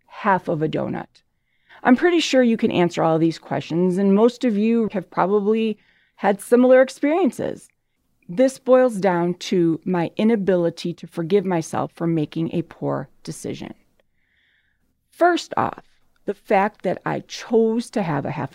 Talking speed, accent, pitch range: 155 wpm, American, 160-215 Hz